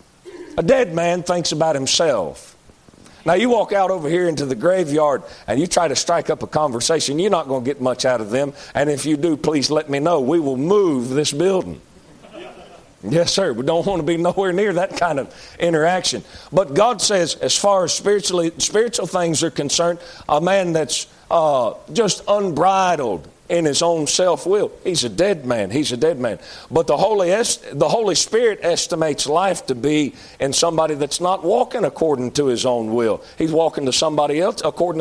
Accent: American